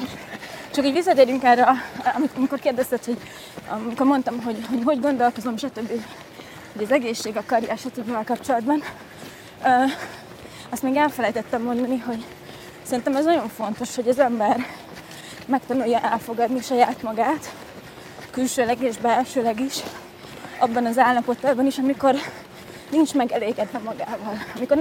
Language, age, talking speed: Hungarian, 20-39, 115 wpm